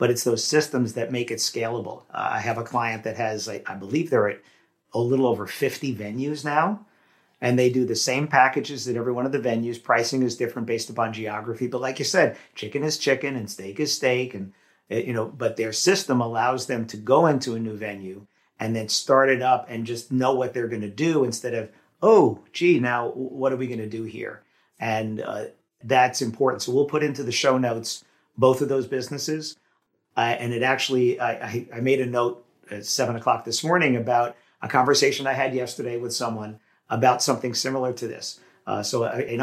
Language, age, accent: English, 50-69, American